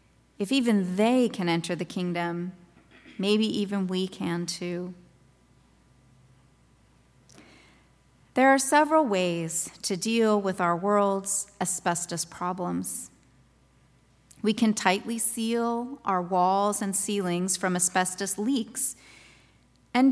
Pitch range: 185-235 Hz